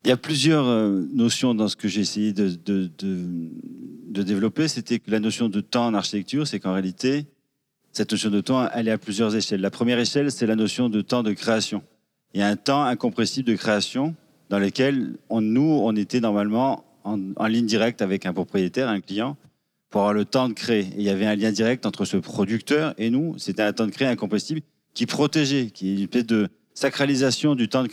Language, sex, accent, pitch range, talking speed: English, male, French, 105-135 Hz, 220 wpm